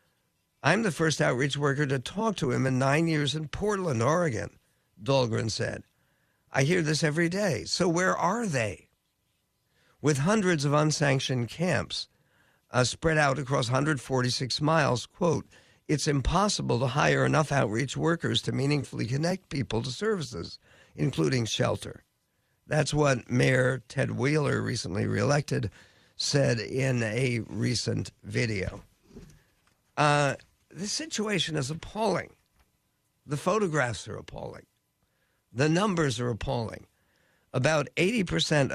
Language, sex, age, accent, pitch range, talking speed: English, male, 50-69, American, 125-155 Hz, 120 wpm